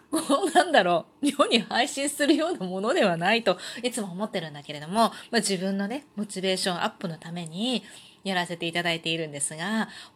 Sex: female